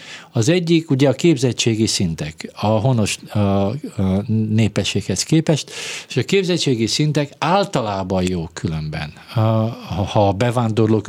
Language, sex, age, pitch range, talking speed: Hungarian, male, 50-69, 105-135 Hz, 130 wpm